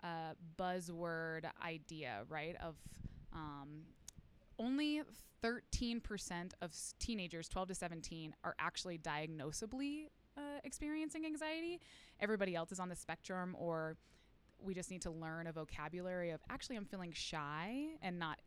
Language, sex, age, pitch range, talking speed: English, female, 20-39, 160-200 Hz, 130 wpm